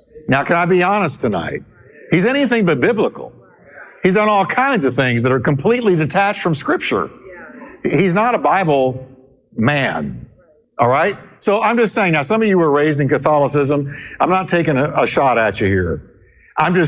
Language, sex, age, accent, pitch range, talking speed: English, male, 50-69, American, 150-200 Hz, 185 wpm